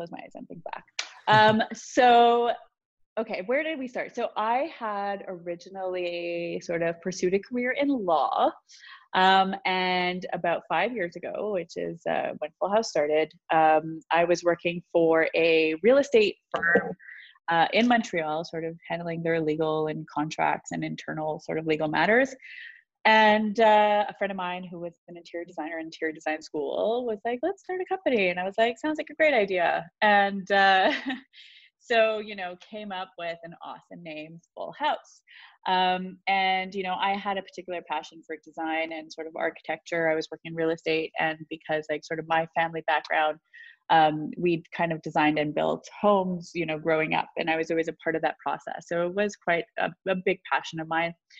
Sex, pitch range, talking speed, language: female, 160-215 Hz, 195 wpm, English